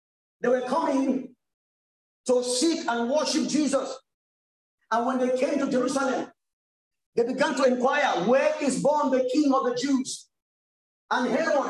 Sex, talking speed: male, 150 wpm